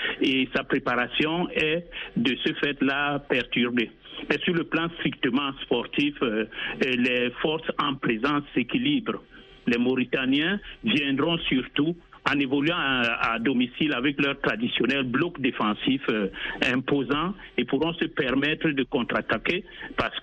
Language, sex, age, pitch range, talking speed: French, male, 60-79, 125-160 Hz, 130 wpm